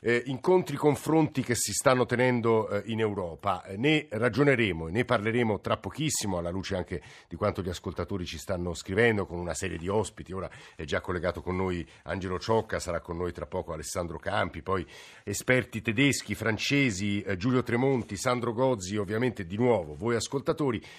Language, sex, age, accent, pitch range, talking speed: Italian, male, 50-69, native, 95-125 Hz, 175 wpm